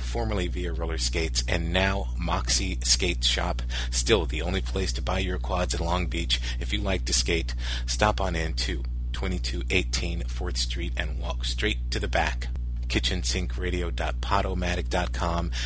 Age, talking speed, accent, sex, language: 30-49, 150 wpm, American, male, English